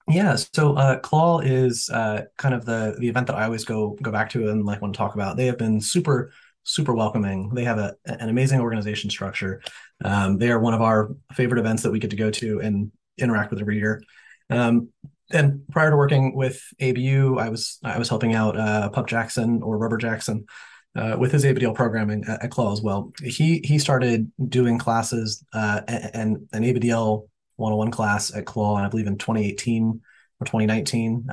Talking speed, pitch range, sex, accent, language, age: 205 wpm, 105-125 Hz, male, American, English, 30-49